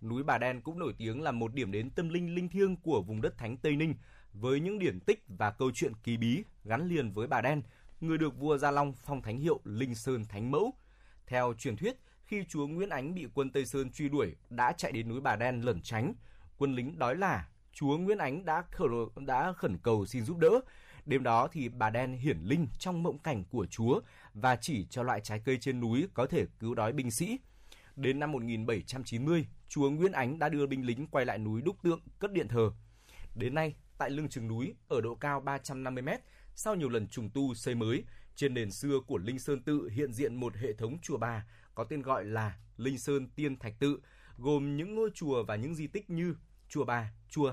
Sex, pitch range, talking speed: male, 115-150 Hz, 225 wpm